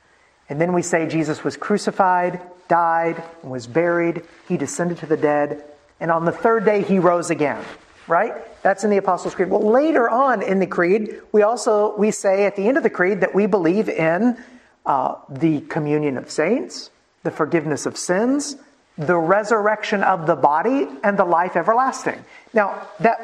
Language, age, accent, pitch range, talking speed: English, 50-69, American, 165-225 Hz, 180 wpm